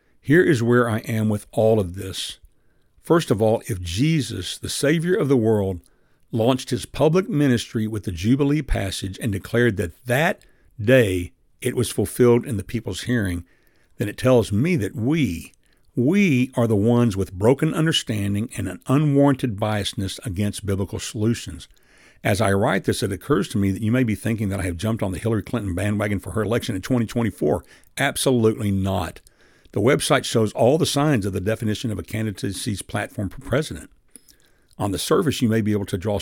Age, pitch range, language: 60-79, 100-125 Hz, English